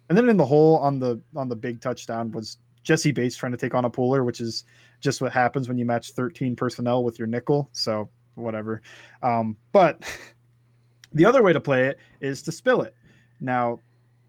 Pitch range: 120-145 Hz